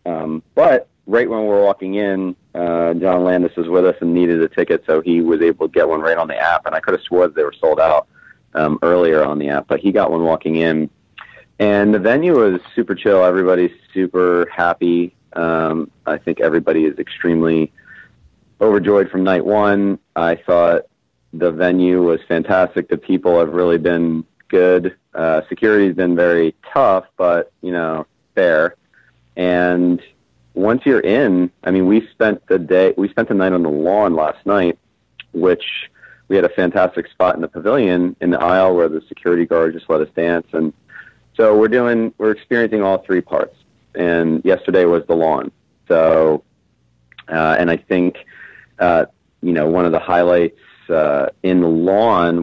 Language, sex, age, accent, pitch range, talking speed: English, male, 30-49, American, 80-95 Hz, 180 wpm